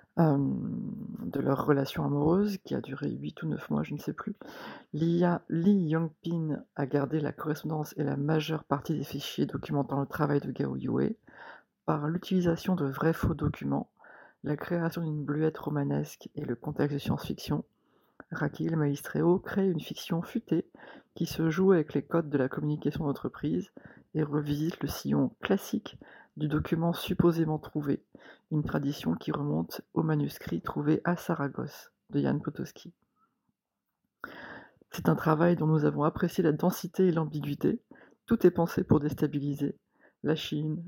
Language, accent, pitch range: French, French, 140-165 Hz